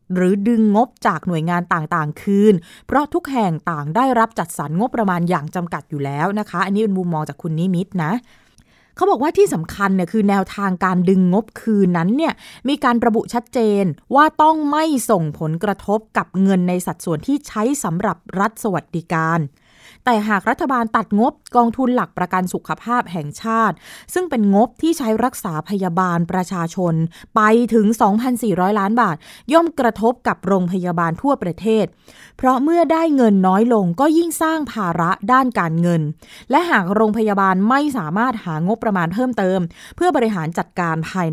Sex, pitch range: female, 180-240 Hz